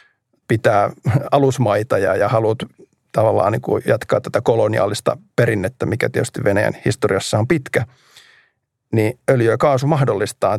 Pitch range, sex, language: 115-135 Hz, male, Finnish